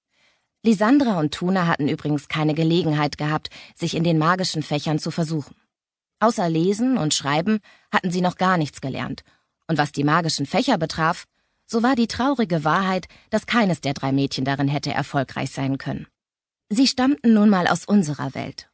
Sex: female